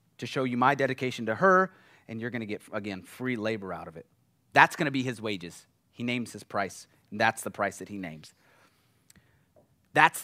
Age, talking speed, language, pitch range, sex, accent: 30-49, 200 wpm, English, 115-170 Hz, male, American